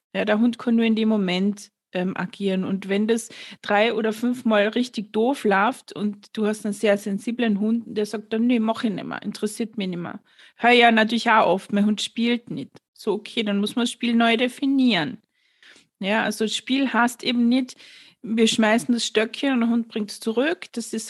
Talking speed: 215 wpm